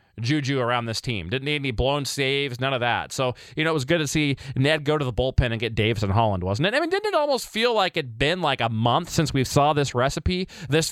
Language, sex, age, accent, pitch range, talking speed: English, male, 20-39, American, 115-160 Hz, 280 wpm